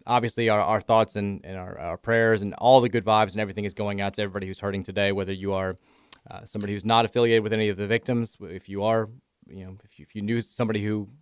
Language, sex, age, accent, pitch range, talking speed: English, male, 20-39, American, 100-125 Hz, 255 wpm